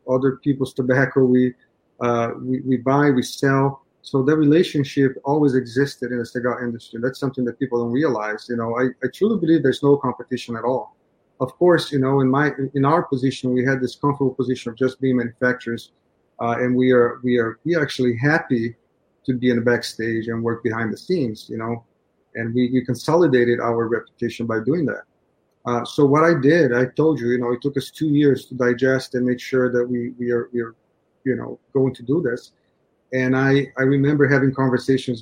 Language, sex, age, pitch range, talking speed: English, male, 30-49, 120-135 Hz, 210 wpm